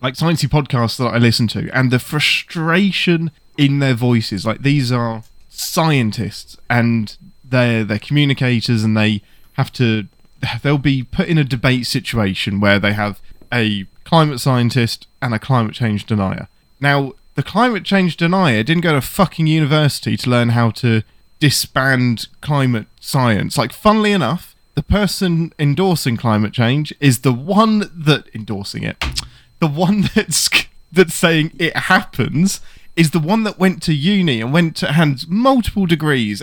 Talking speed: 155 wpm